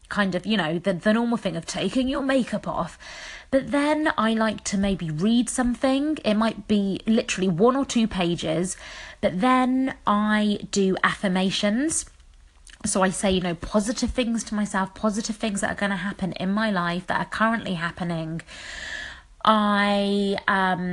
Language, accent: English, British